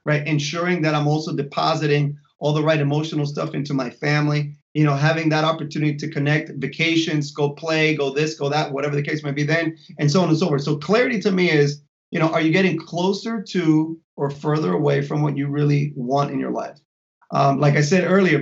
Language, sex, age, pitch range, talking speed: English, male, 30-49, 145-175 Hz, 220 wpm